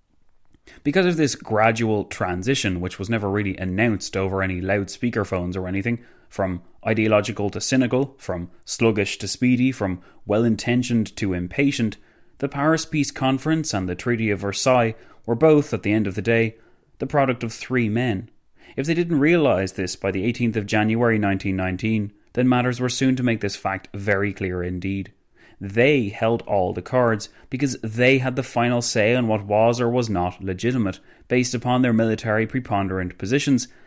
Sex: male